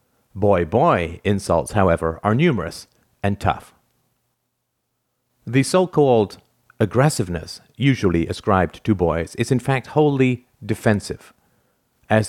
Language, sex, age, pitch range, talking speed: English, male, 50-69, 90-125 Hz, 100 wpm